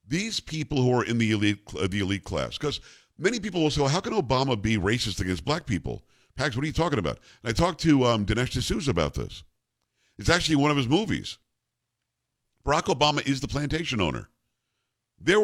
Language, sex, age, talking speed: English, male, 50-69, 200 wpm